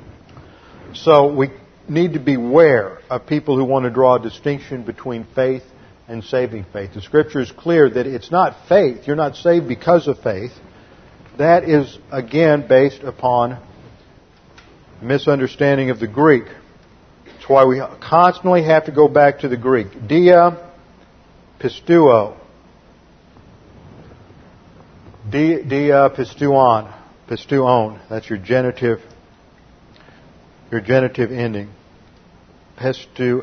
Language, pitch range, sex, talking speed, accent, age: English, 115-145 Hz, male, 115 wpm, American, 50-69